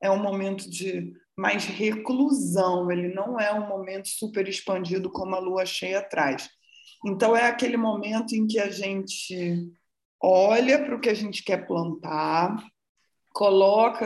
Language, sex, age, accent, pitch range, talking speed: Portuguese, female, 20-39, Brazilian, 185-245 Hz, 150 wpm